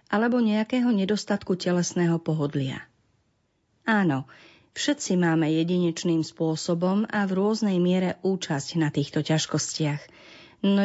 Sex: female